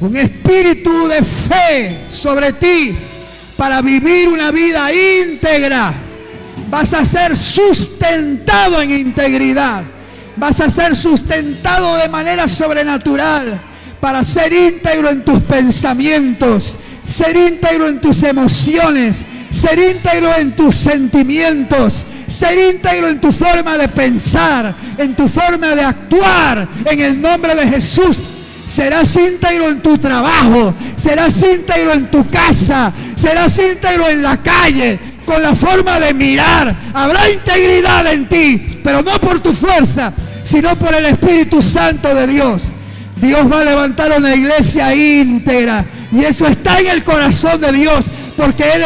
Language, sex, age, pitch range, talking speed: Spanish, male, 50-69, 275-340 Hz, 135 wpm